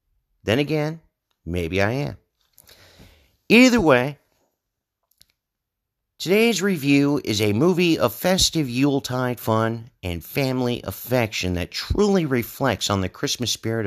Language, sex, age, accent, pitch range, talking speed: English, male, 50-69, American, 100-135 Hz, 110 wpm